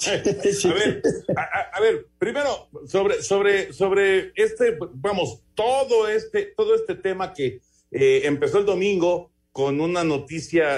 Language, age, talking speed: Spanish, 50-69, 135 wpm